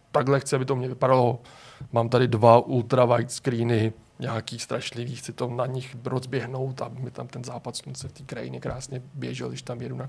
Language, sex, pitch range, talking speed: Czech, male, 120-135 Hz, 190 wpm